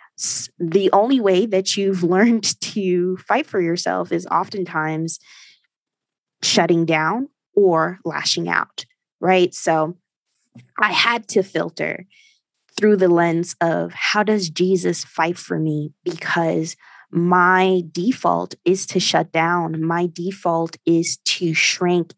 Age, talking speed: 20-39, 120 wpm